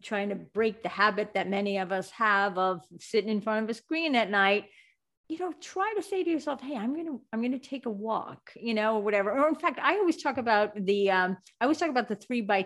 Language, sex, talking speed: English, female, 255 wpm